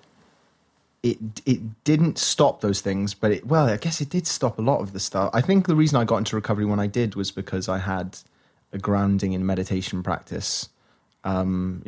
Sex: male